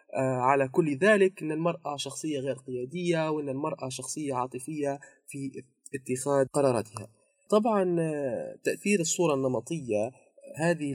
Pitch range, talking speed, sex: 125-155 Hz, 110 wpm, male